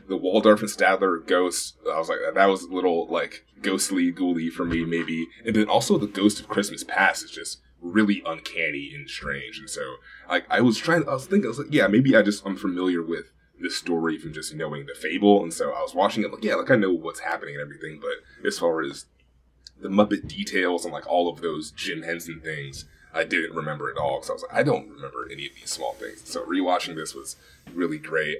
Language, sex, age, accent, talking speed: English, male, 20-39, American, 230 wpm